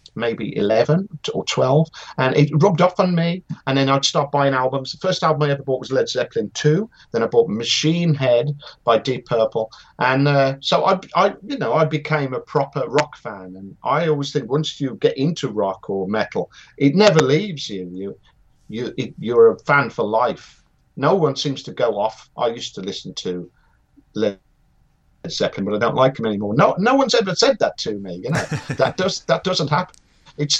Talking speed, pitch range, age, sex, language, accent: 205 wpm, 115-165 Hz, 50-69, male, English, British